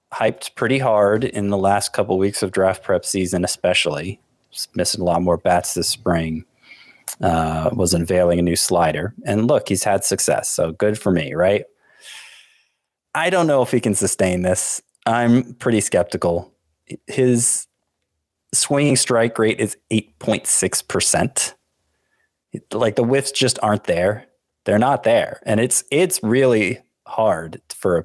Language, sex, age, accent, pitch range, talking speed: English, male, 30-49, American, 95-135 Hz, 150 wpm